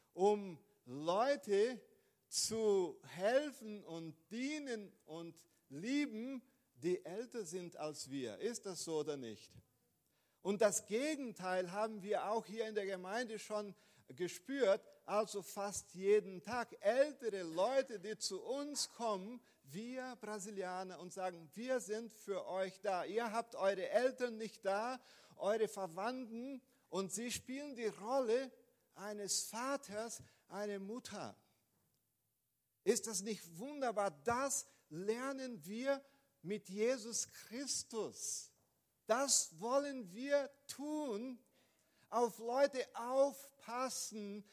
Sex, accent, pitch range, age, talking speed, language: male, German, 180-245 Hz, 40-59, 110 wpm, German